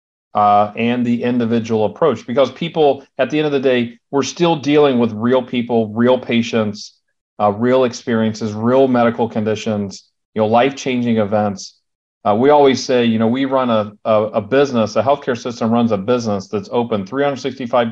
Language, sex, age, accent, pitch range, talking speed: English, male, 40-59, American, 110-135 Hz, 175 wpm